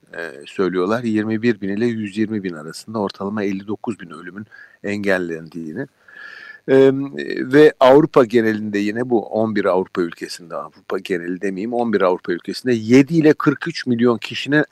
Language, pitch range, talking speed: Turkish, 105-130 Hz, 135 wpm